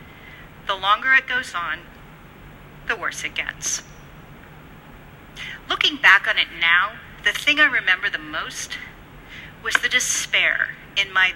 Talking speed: 130 wpm